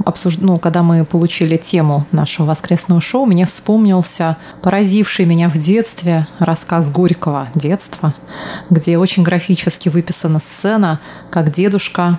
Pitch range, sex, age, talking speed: 165-195 Hz, female, 20-39, 120 wpm